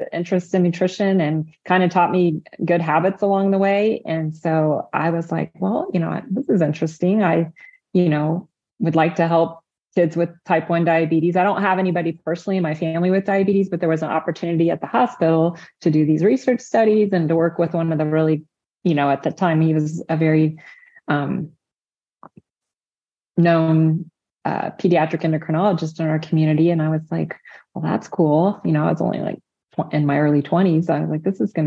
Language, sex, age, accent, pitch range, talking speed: English, female, 30-49, American, 160-200 Hz, 200 wpm